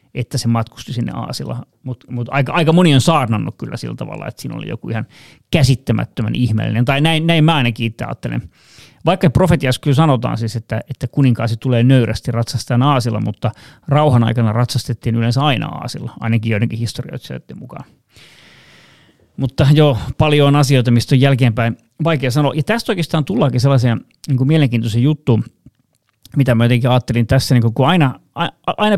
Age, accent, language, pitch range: 30-49, native, Finnish, 115-145 Hz